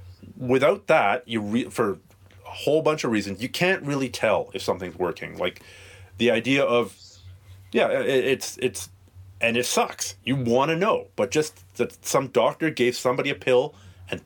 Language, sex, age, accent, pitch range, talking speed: English, male, 40-59, American, 95-125 Hz, 175 wpm